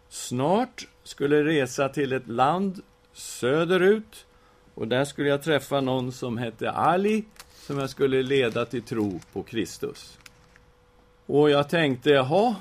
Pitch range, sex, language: 120-155 Hz, male, English